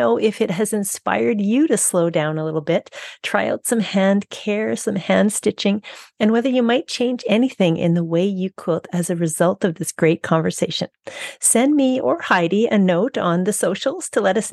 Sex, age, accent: female, 40-59, American